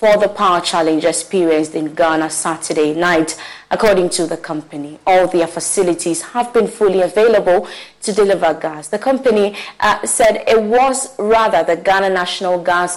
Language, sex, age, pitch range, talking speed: English, female, 20-39, 165-205 Hz, 155 wpm